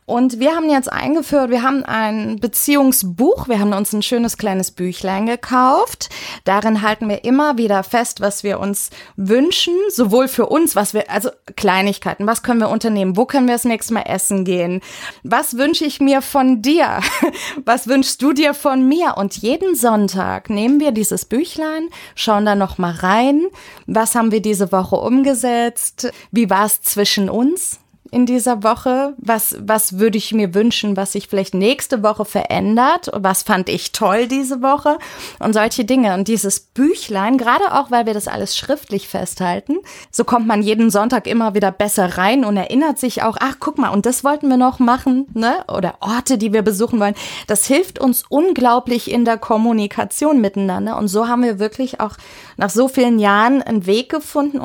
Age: 20-39